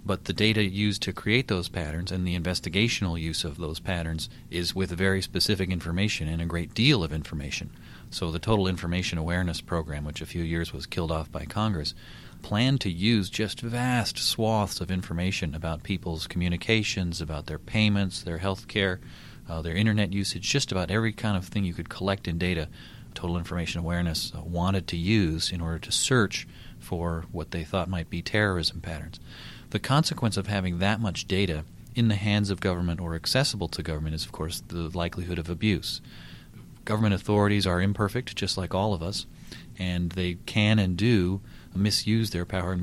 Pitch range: 85-100 Hz